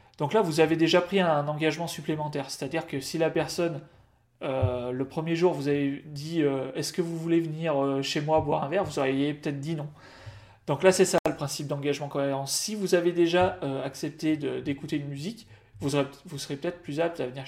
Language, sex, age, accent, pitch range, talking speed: French, male, 30-49, French, 135-160 Hz, 225 wpm